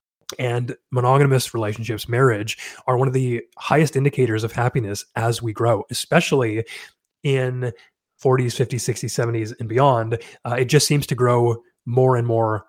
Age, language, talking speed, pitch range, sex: 30-49, English, 150 wpm, 115-130 Hz, male